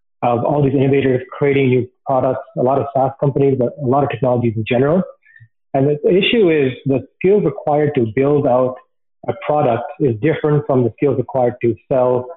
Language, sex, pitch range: English, male, 125-150 Hz